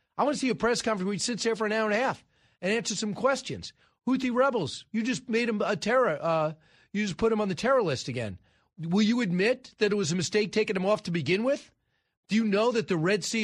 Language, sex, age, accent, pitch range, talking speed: English, male, 40-59, American, 180-220 Hz, 270 wpm